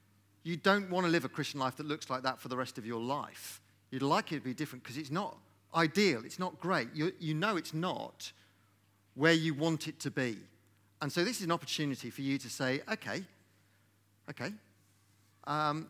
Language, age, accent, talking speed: English, 40-59, British, 210 wpm